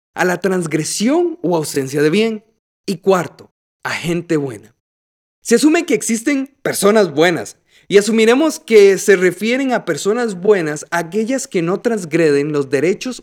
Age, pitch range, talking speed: 30-49, 170-250 Hz, 145 wpm